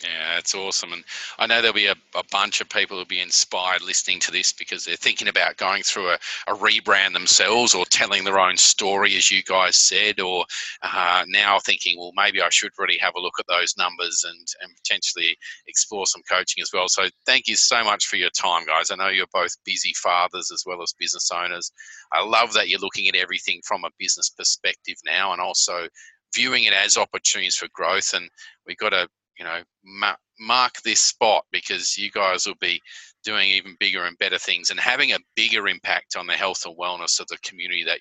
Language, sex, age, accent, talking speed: English, male, 40-59, Australian, 215 wpm